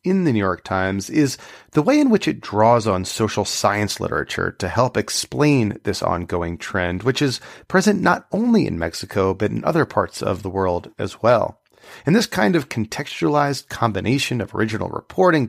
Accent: American